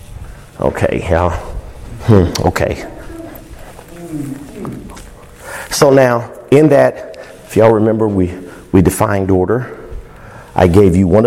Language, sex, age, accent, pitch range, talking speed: English, male, 50-69, American, 110-145 Hz, 105 wpm